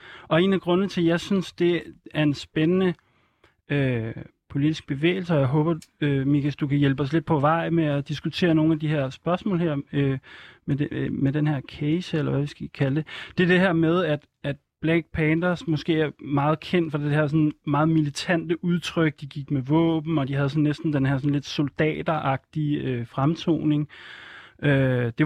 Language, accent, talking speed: Danish, native, 205 wpm